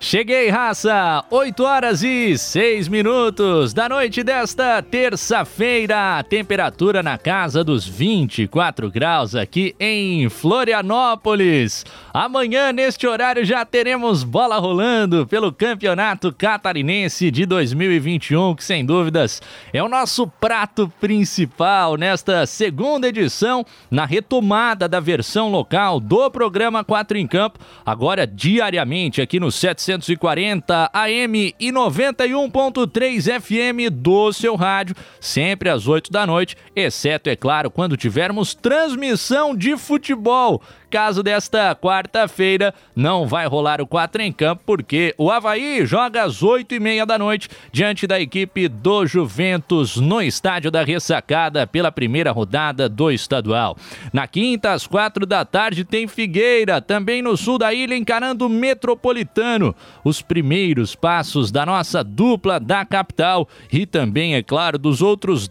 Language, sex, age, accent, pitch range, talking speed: Portuguese, male, 20-39, Brazilian, 160-230 Hz, 130 wpm